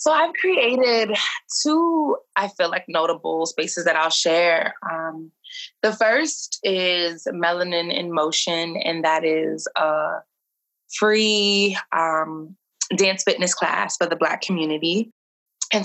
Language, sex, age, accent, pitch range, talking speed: English, female, 20-39, American, 170-235 Hz, 125 wpm